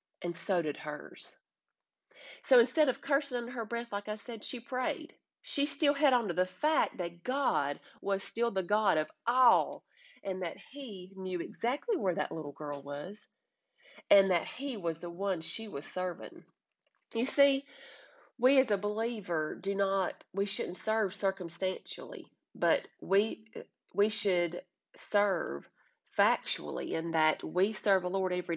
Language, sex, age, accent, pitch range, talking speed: English, female, 30-49, American, 170-230 Hz, 160 wpm